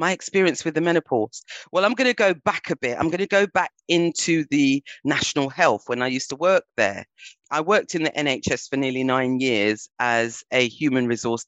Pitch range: 125-165 Hz